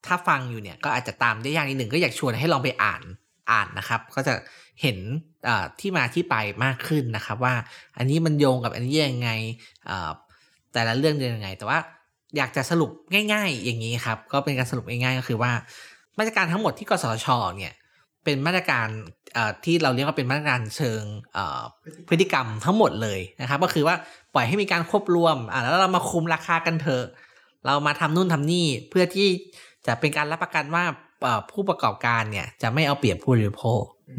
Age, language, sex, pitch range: 20-39, Thai, male, 115-155 Hz